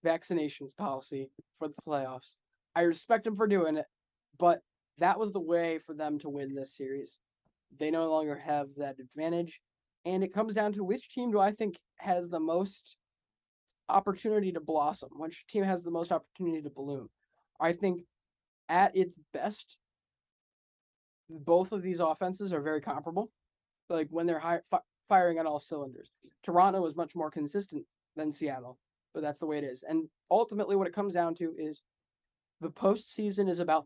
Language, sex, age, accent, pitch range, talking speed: English, male, 20-39, American, 150-190 Hz, 170 wpm